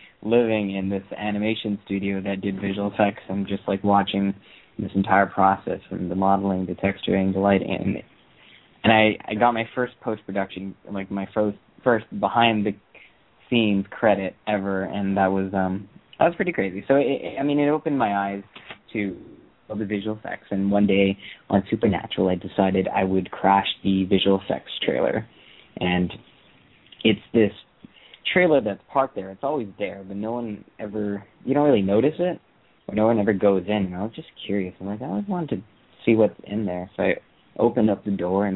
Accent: American